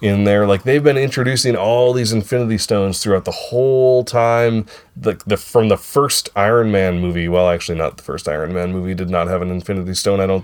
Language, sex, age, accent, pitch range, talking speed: English, male, 30-49, American, 90-120 Hz, 220 wpm